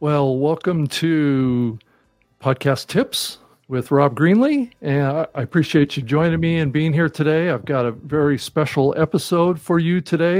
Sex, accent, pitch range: male, American, 125-160 Hz